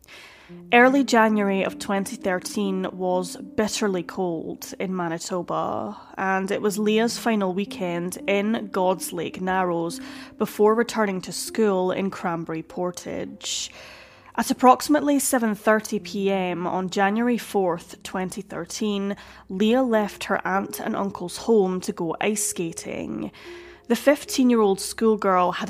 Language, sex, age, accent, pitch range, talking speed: English, female, 10-29, British, 185-230 Hz, 110 wpm